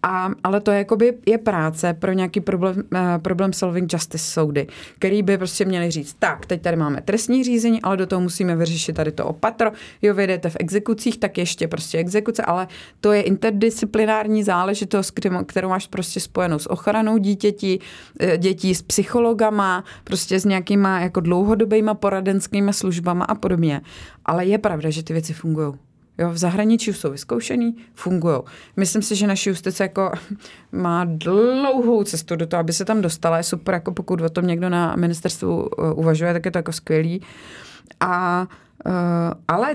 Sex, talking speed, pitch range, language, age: female, 170 wpm, 170-210 Hz, Czech, 30-49